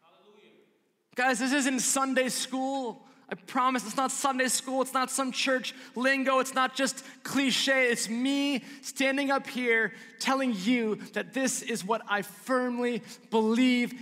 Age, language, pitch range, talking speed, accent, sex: 20-39, English, 210-265 Hz, 145 wpm, American, male